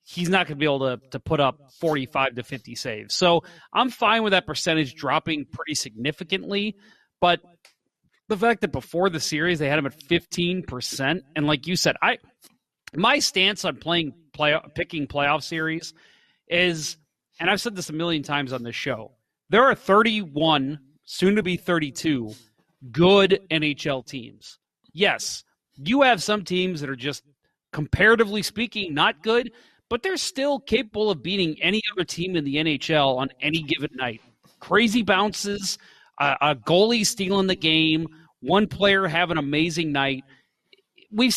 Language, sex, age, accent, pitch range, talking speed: English, male, 30-49, American, 150-205 Hz, 160 wpm